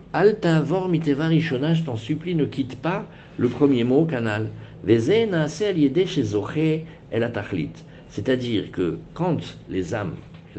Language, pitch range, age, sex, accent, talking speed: French, 105-150 Hz, 60-79, male, French, 145 wpm